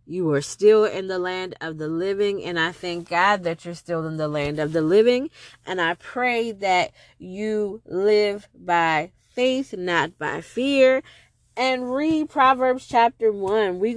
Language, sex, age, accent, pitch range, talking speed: English, female, 20-39, American, 175-235 Hz, 170 wpm